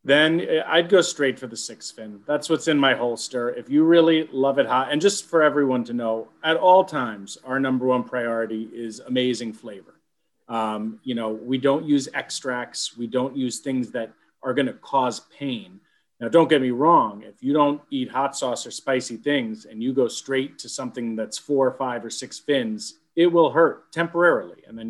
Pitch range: 125-165 Hz